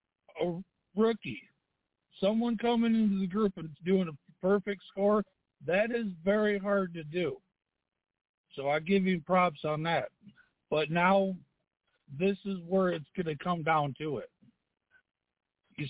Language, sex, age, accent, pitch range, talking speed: English, male, 60-79, American, 165-205 Hz, 145 wpm